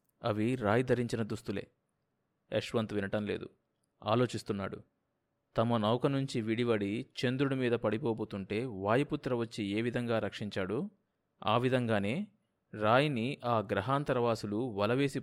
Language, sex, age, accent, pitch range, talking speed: Telugu, male, 20-39, native, 110-130 Hz, 95 wpm